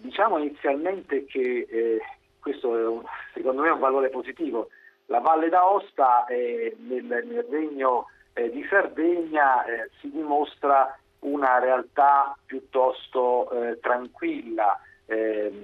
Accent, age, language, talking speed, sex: native, 50-69, Italian, 120 wpm, male